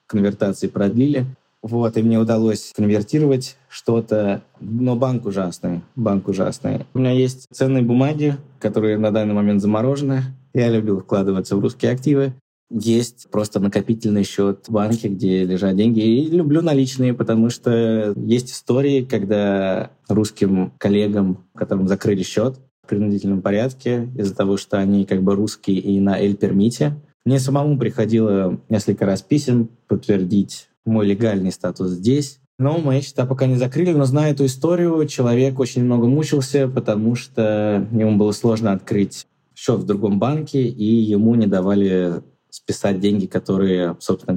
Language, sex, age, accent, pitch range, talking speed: Russian, male, 20-39, native, 100-130 Hz, 145 wpm